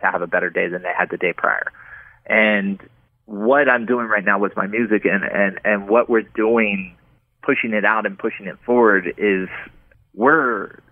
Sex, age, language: male, 30-49, English